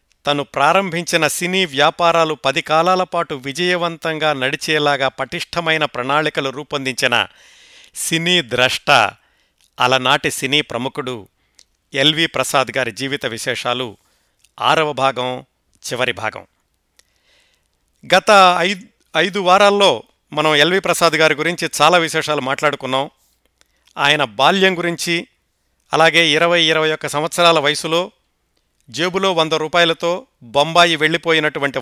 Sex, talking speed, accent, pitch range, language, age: male, 95 wpm, native, 145-170 Hz, Telugu, 50-69